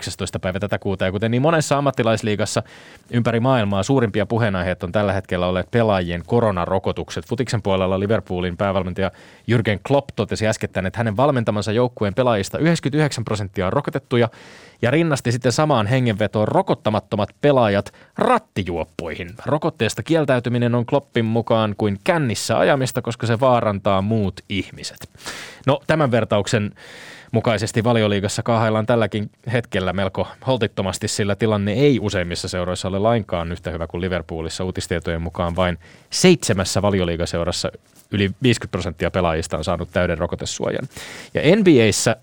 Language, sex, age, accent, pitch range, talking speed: Finnish, male, 20-39, native, 95-120 Hz, 130 wpm